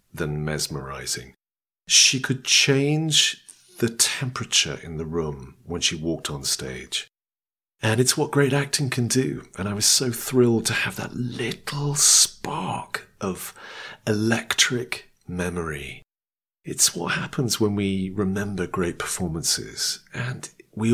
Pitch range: 90-140 Hz